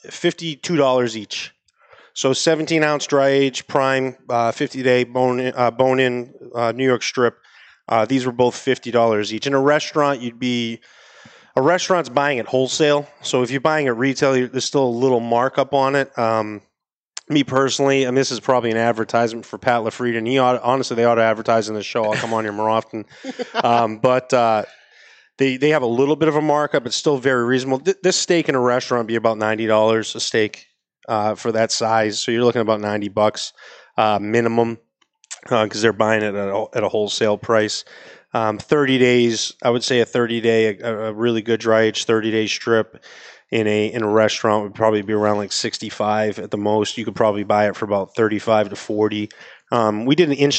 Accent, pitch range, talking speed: American, 110-130 Hz, 210 wpm